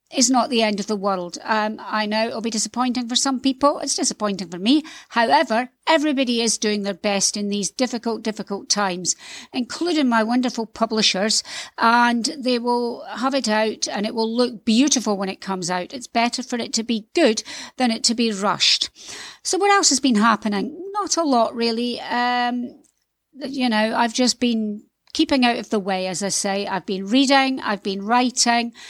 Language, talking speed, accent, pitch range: English, 190 wpm, British, 220-270 Hz